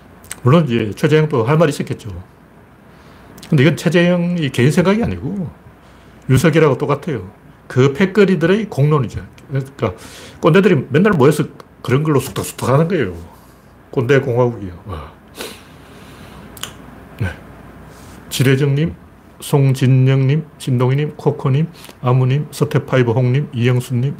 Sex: male